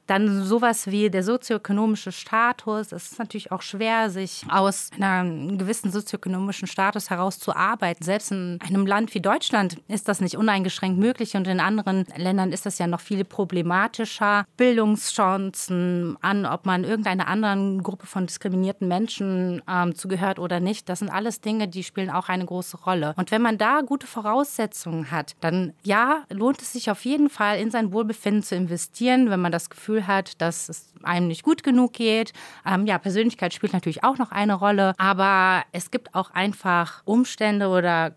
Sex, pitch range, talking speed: female, 180-210 Hz, 180 wpm